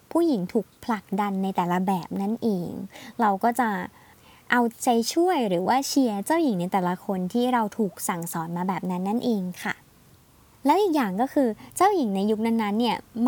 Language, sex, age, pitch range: Thai, male, 20-39, 205-270 Hz